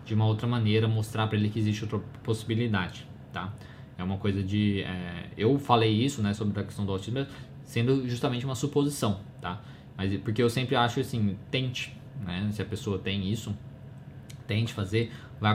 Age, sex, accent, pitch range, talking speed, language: 20-39, male, Brazilian, 105-130 Hz, 180 wpm, Portuguese